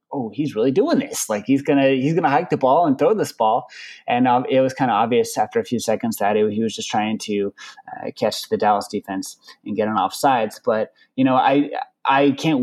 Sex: male